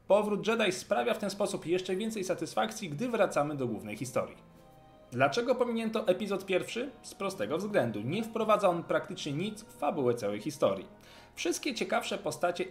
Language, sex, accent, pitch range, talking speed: Polish, male, native, 135-205 Hz, 155 wpm